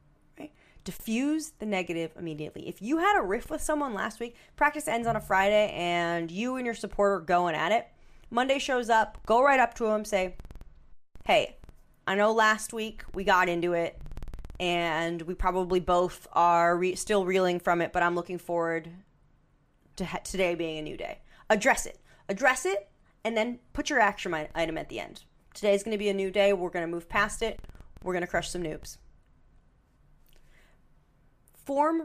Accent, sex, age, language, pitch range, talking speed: American, female, 30-49, English, 170-220 Hz, 180 wpm